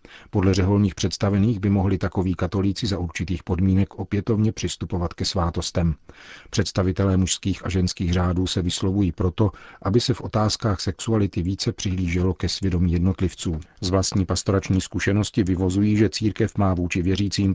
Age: 50-69